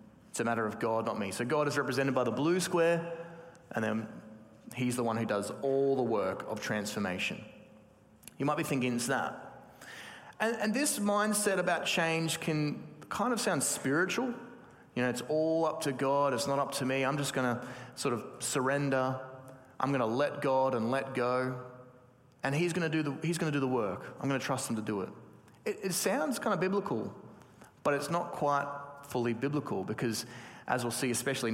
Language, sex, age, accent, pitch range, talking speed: English, male, 30-49, Australian, 125-160 Hz, 195 wpm